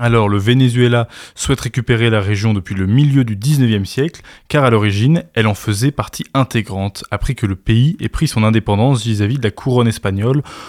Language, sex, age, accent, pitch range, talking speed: French, male, 20-39, French, 110-130 Hz, 190 wpm